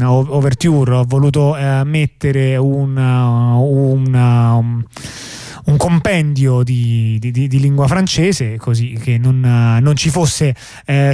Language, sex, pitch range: Italian, male, 130-165 Hz